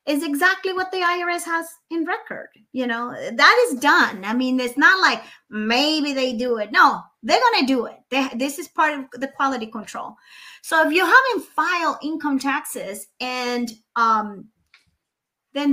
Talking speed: 170 wpm